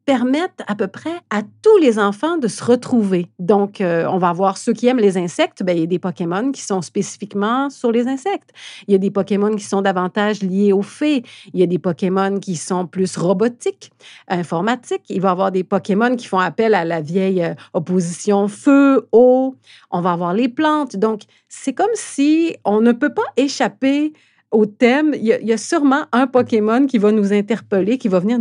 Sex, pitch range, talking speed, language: female, 185-250 Hz, 210 wpm, French